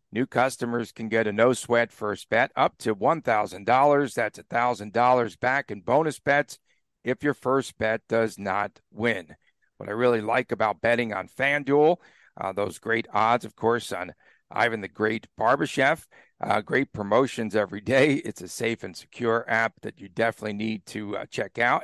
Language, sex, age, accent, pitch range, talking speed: English, male, 50-69, American, 105-130 Hz, 170 wpm